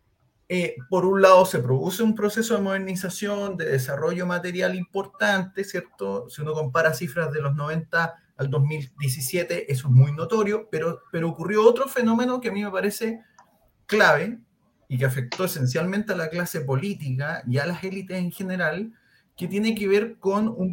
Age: 30-49